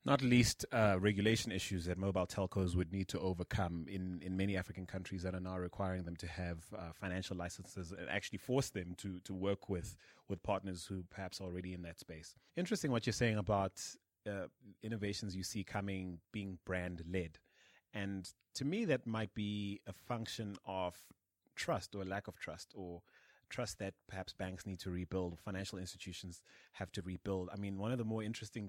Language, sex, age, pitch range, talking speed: English, male, 30-49, 90-105 Hz, 190 wpm